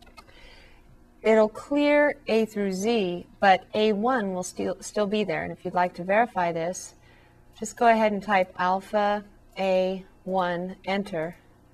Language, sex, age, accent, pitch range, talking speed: English, female, 30-49, American, 170-205 Hz, 135 wpm